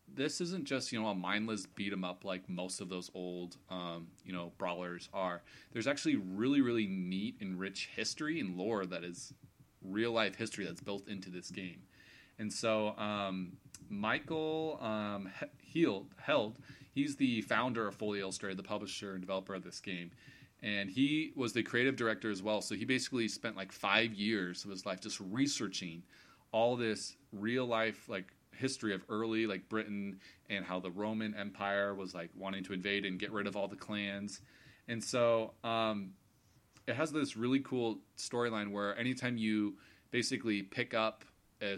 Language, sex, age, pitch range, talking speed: English, male, 30-49, 95-115 Hz, 170 wpm